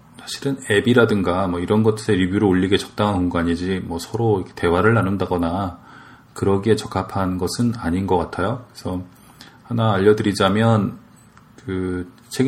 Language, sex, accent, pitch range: Korean, male, native, 90-110 Hz